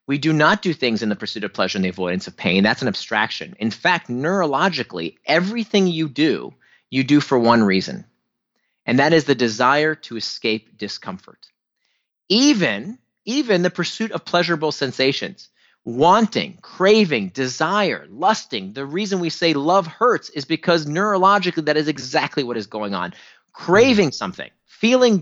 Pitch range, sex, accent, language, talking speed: 125-180 Hz, male, American, English, 160 wpm